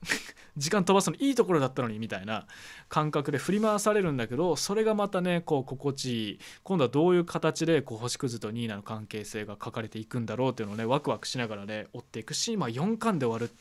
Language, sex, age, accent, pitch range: Japanese, male, 20-39, native, 110-165 Hz